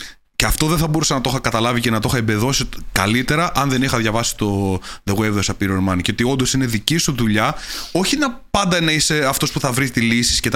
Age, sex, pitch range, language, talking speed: 20-39, male, 110-145 Hz, Greek, 245 wpm